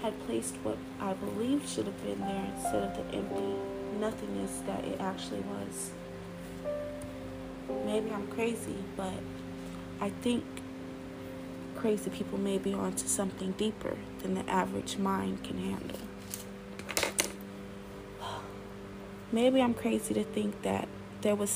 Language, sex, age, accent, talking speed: English, female, 30-49, American, 125 wpm